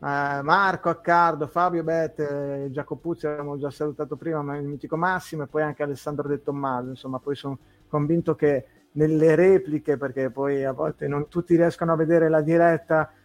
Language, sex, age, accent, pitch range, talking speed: Italian, male, 30-49, native, 145-170 Hz, 170 wpm